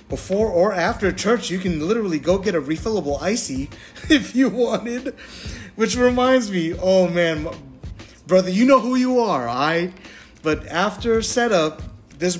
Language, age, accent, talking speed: English, 30-49, American, 155 wpm